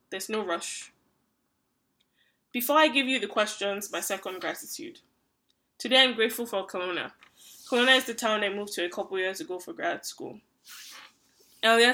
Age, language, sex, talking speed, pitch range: 10-29, English, female, 160 wpm, 185-225 Hz